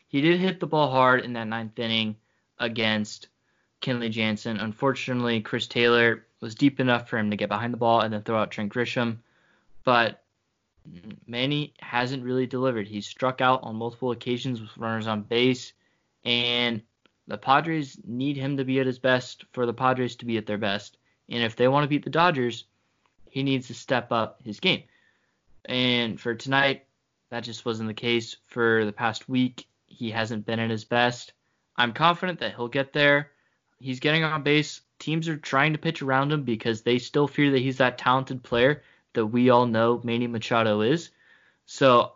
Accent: American